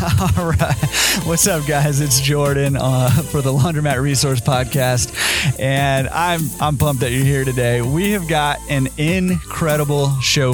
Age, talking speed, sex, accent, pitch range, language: 30-49, 155 wpm, male, American, 130-165 Hz, English